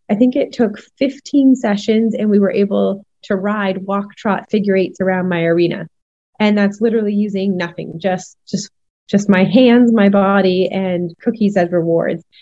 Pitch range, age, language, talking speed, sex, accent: 190-215 Hz, 20-39, English, 170 wpm, female, American